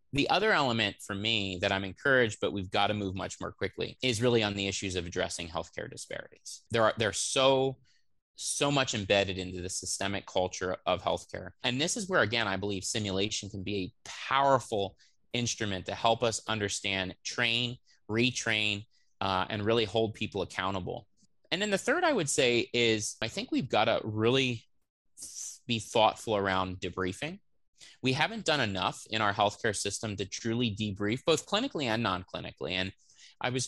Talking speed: 175 wpm